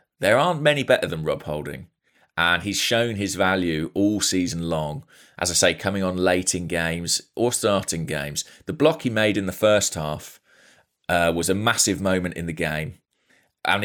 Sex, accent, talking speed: male, British, 185 wpm